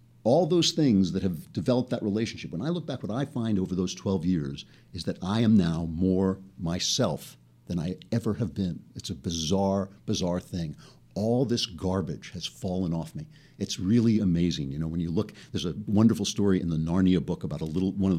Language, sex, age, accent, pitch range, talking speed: English, male, 50-69, American, 95-135 Hz, 210 wpm